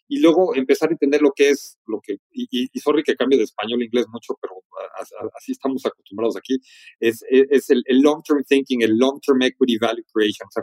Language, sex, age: Spanish, male, 40-59